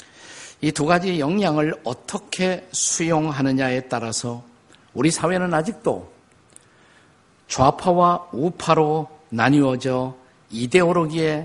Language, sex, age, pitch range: Korean, male, 50-69, 125-170 Hz